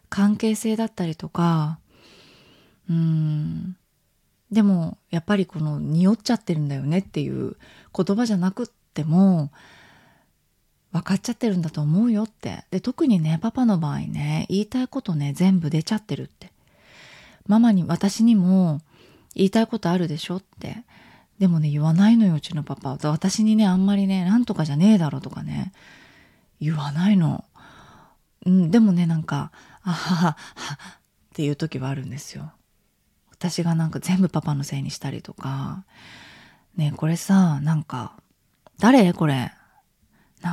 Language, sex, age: Japanese, female, 20-39